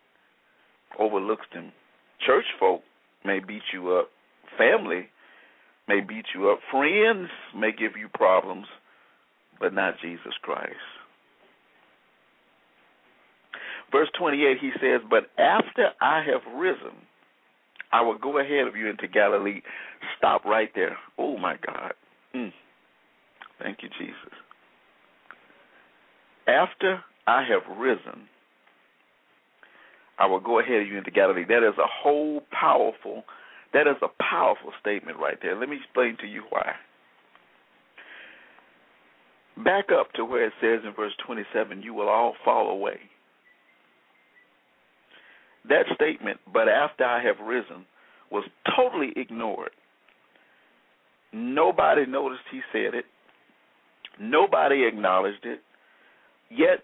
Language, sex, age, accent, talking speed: English, male, 50-69, American, 120 wpm